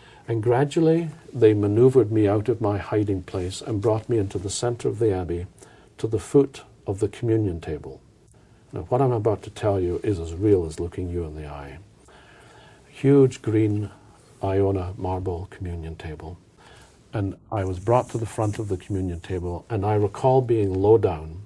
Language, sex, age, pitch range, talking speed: English, male, 50-69, 90-115 Hz, 180 wpm